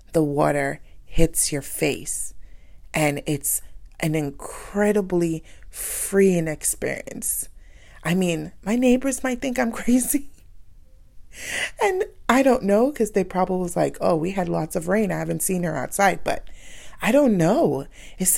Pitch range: 160-220 Hz